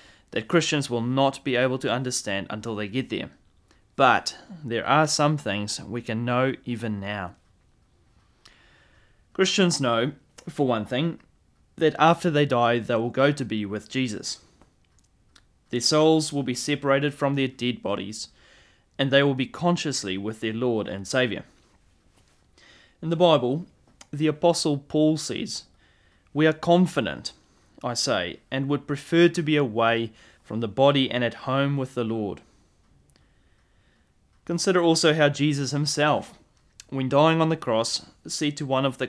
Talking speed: 150 wpm